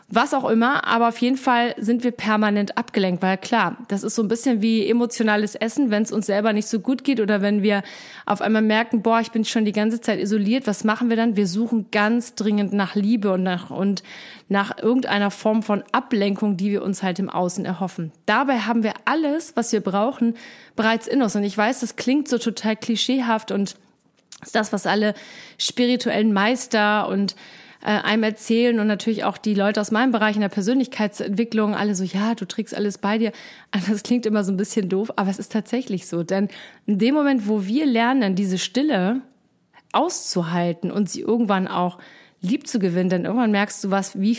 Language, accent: German, German